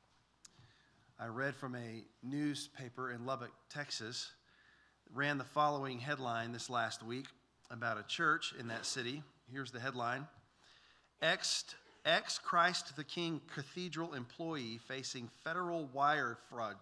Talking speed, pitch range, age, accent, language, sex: 125 wpm, 125-155 Hz, 40-59, American, English, male